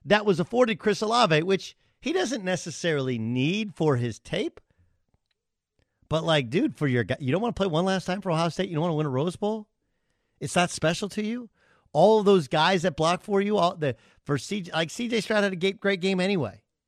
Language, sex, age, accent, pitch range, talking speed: English, male, 50-69, American, 130-200 Hz, 225 wpm